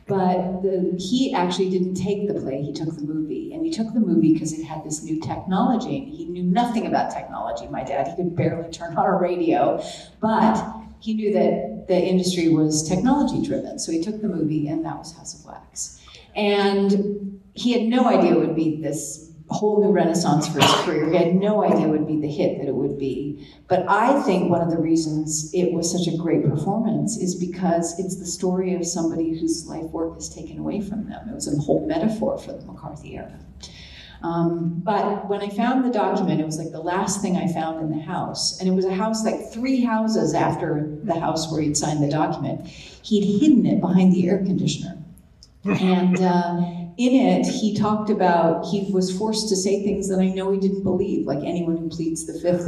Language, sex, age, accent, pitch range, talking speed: English, female, 40-59, American, 165-200 Hz, 215 wpm